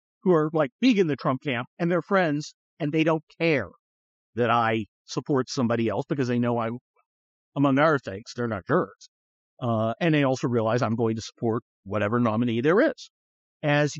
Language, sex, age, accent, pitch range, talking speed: English, male, 50-69, American, 120-165 Hz, 190 wpm